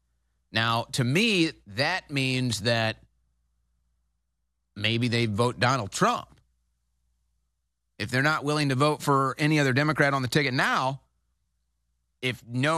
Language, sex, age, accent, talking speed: English, male, 30-49, American, 125 wpm